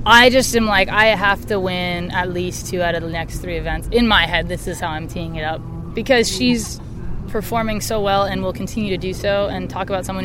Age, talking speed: 20-39, 245 wpm